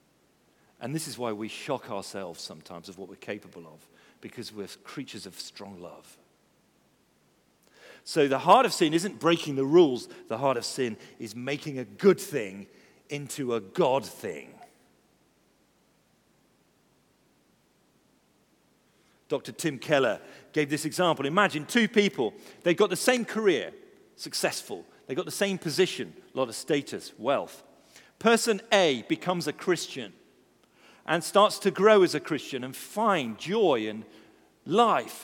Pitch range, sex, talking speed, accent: 140-205 Hz, male, 140 wpm, British